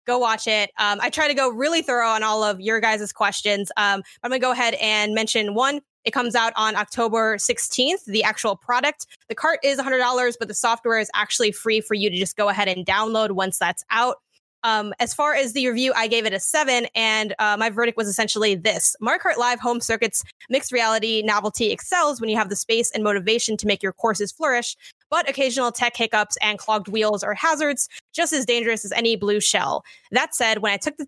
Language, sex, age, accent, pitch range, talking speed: English, female, 20-39, American, 210-245 Hz, 225 wpm